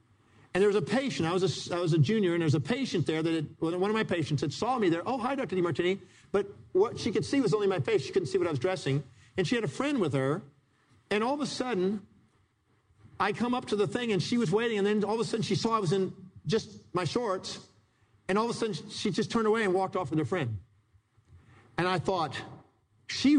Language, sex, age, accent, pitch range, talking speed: English, male, 50-69, American, 120-190 Hz, 265 wpm